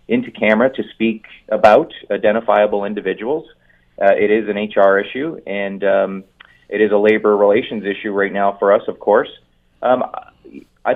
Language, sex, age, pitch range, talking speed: English, male, 30-49, 100-115 Hz, 160 wpm